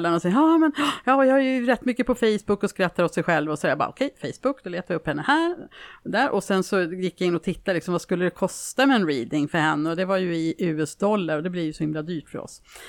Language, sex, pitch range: Swedish, female, 180-260 Hz